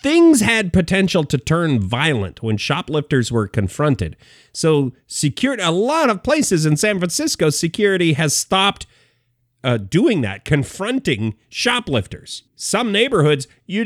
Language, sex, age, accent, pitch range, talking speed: English, male, 40-59, American, 110-180 Hz, 130 wpm